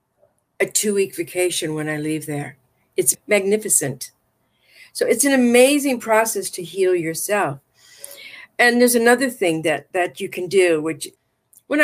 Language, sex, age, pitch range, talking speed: English, female, 50-69, 170-245 Hz, 145 wpm